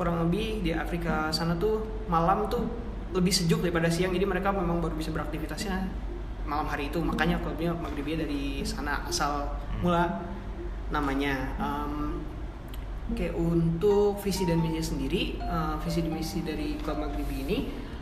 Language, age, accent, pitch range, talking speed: Indonesian, 20-39, native, 150-175 Hz, 140 wpm